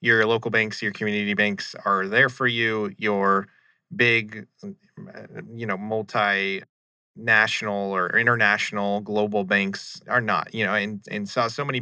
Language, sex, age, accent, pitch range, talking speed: English, male, 30-49, American, 100-120 Hz, 140 wpm